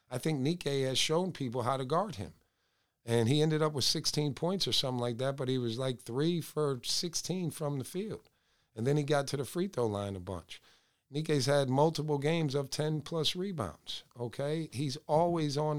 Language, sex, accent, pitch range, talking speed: English, male, American, 120-150 Hz, 200 wpm